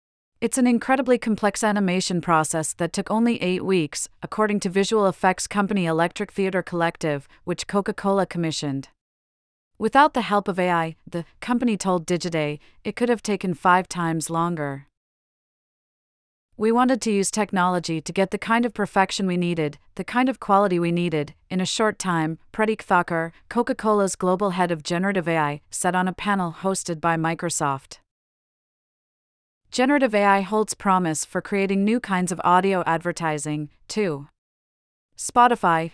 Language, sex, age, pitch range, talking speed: English, female, 40-59, 170-205 Hz, 150 wpm